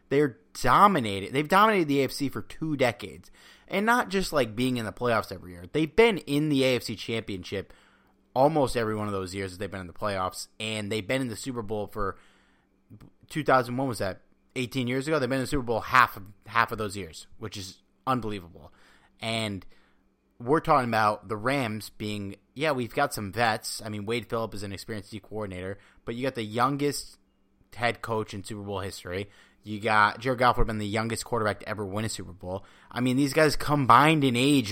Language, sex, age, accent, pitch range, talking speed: English, male, 30-49, American, 100-130 Hz, 205 wpm